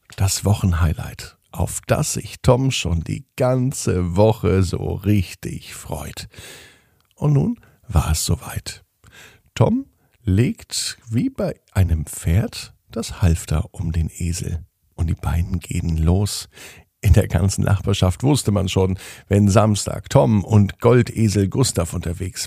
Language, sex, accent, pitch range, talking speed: German, male, German, 90-110 Hz, 130 wpm